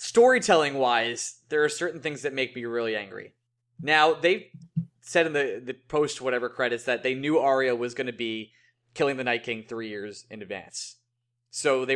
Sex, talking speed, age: male, 180 wpm, 20-39